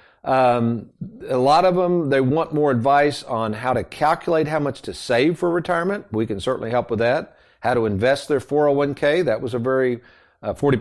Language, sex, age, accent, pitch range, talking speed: English, male, 50-69, American, 115-155 Hz, 195 wpm